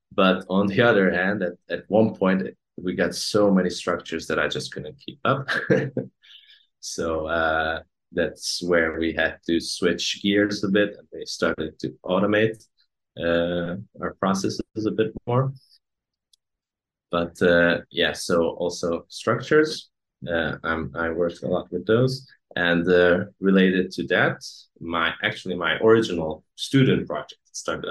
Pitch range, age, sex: 85-110 Hz, 20-39, male